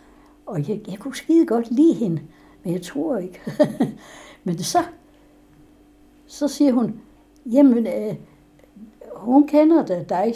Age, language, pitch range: 60-79, Danish, 175-245 Hz